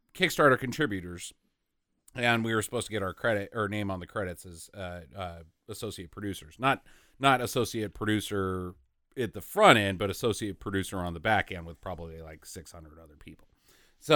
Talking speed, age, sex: 180 wpm, 40-59, male